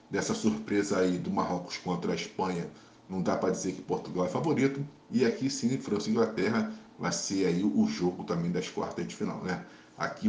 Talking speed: 200 wpm